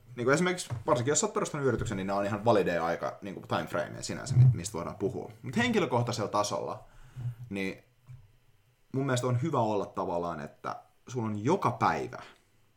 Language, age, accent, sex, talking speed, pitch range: Finnish, 30-49, native, male, 165 wpm, 105-125 Hz